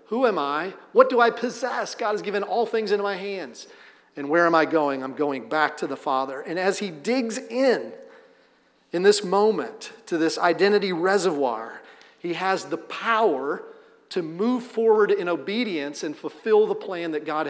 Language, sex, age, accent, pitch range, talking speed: English, male, 40-59, American, 170-250 Hz, 180 wpm